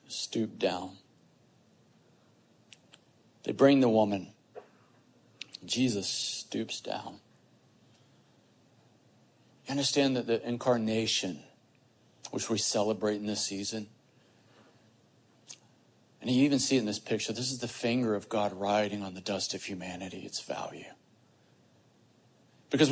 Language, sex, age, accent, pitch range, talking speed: English, male, 40-59, American, 120-150 Hz, 115 wpm